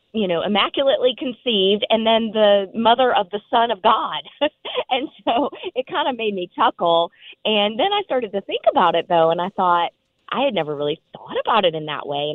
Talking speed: 210 wpm